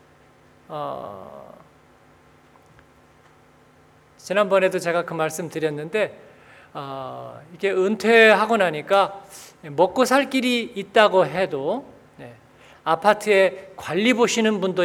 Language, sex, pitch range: Korean, male, 155-245 Hz